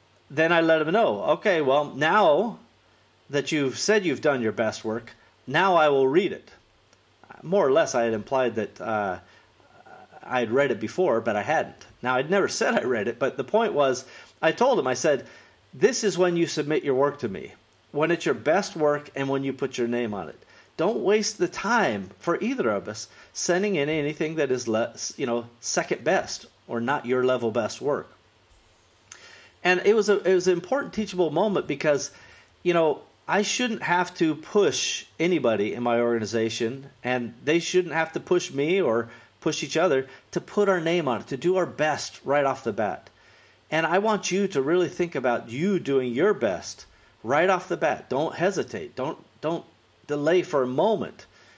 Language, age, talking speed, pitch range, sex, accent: English, 40-59, 200 wpm, 120-180 Hz, male, American